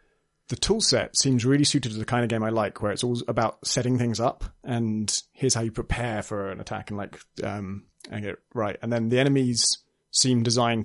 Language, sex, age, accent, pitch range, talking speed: English, male, 30-49, British, 110-130 Hz, 220 wpm